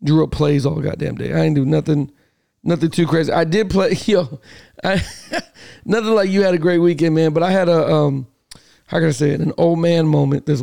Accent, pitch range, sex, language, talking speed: American, 150-180 Hz, male, English, 230 wpm